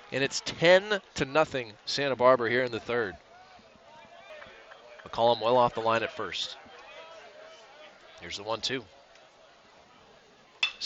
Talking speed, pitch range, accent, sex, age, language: 115 wpm, 135-190 Hz, American, male, 20-39, English